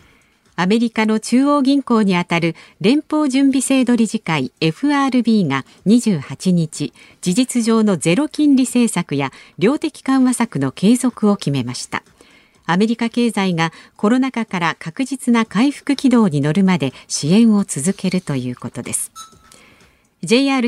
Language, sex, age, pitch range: Japanese, female, 50-69, 170-255 Hz